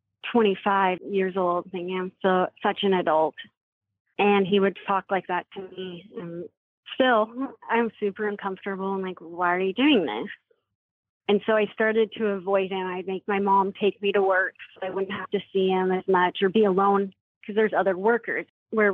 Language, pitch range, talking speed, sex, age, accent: English, 185-215 Hz, 190 wpm, female, 30-49, American